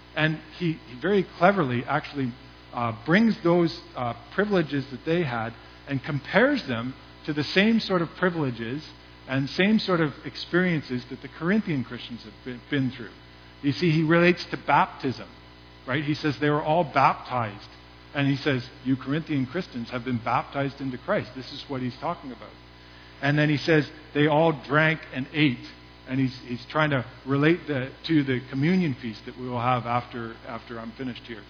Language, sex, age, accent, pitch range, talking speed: English, male, 50-69, American, 120-170 Hz, 180 wpm